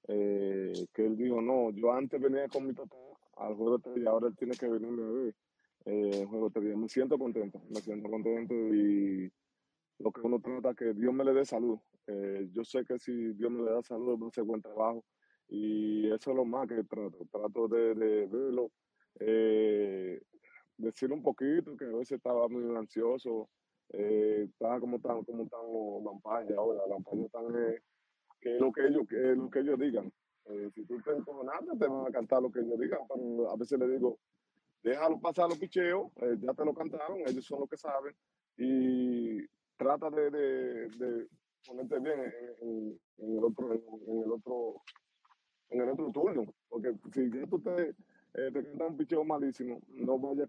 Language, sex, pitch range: English, male, 110-130 Hz